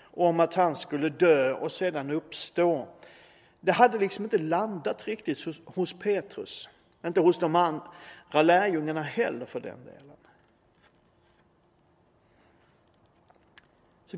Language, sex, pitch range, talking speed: Swedish, male, 150-195 Hz, 115 wpm